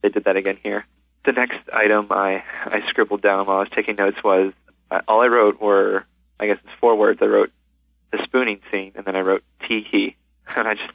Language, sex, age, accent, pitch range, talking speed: English, male, 20-39, American, 75-105 Hz, 225 wpm